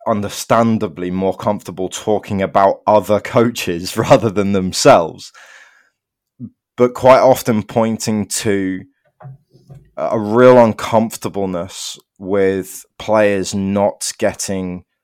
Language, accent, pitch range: English, British, 95-115 Hz